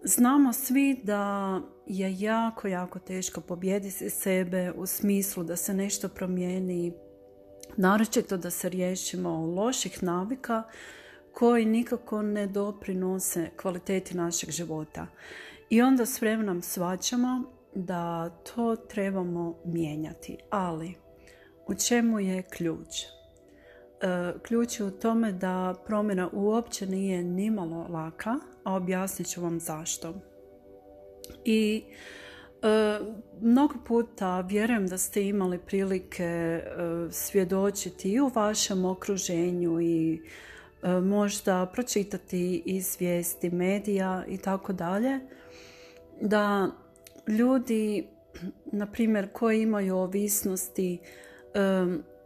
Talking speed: 100 wpm